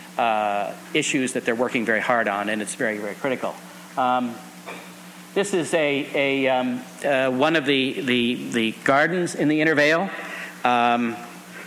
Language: English